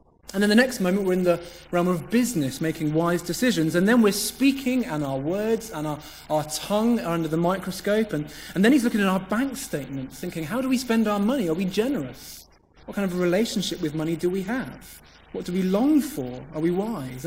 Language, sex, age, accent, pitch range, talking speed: English, male, 30-49, British, 155-215 Hz, 230 wpm